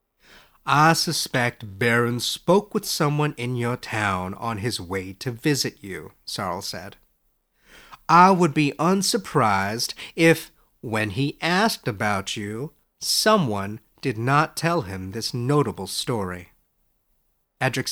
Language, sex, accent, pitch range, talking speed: English, male, American, 105-165 Hz, 120 wpm